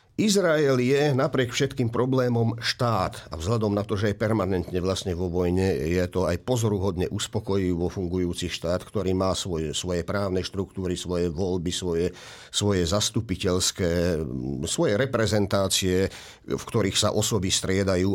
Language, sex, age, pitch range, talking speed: Slovak, male, 50-69, 95-135 Hz, 135 wpm